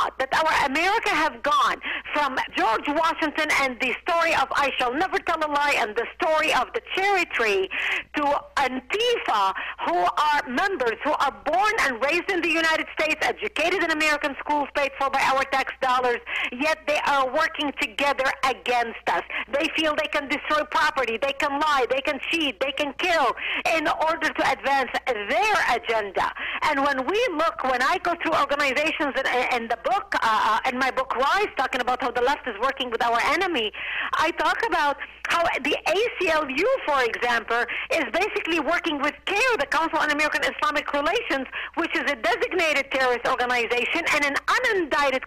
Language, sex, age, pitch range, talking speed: English, female, 50-69, 265-330 Hz, 175 wpm